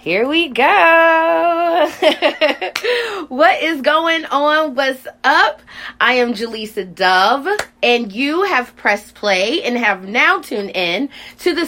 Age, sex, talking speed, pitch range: 20-39, female, 130 wpm, 200-275 Hz